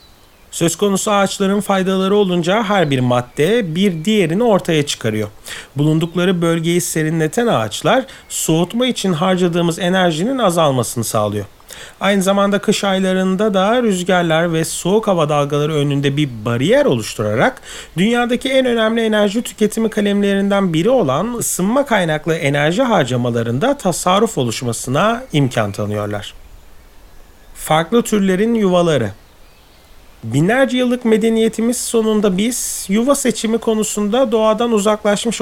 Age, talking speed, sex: 40-59, 110 wpm, male